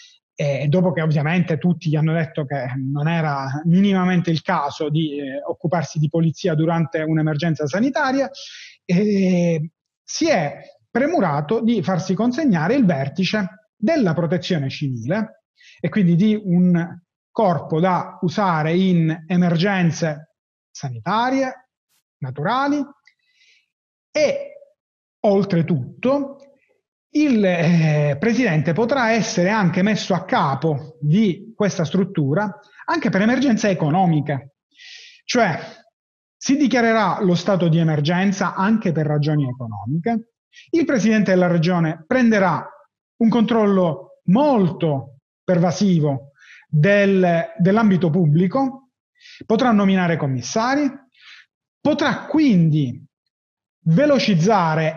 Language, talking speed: Italian, 100 wpm